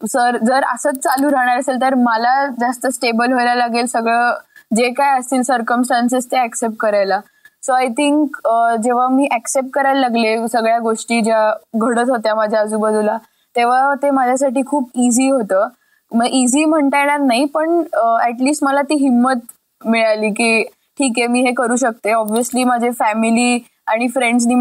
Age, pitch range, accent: 20-39, 230-265 Hz, native